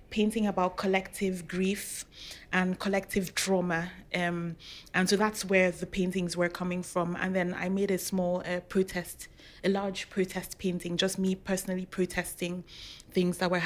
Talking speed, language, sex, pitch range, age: 160 wpm, English, female, 175-190 Hz, 20-39